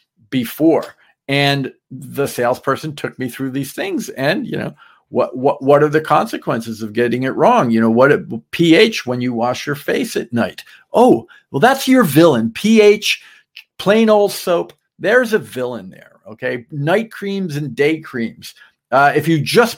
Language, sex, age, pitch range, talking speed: English, male, 50-69, 130-165 Hz, 175 wpm